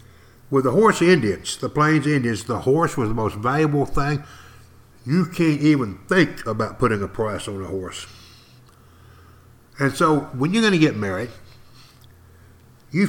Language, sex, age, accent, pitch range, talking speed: English, male, 60-79, American, 105-140 Hz, 155 wpm